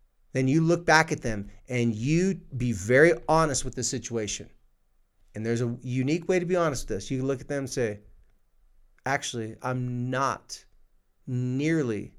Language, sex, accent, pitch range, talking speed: English, male, American, 115-150 Hz, 170 wpm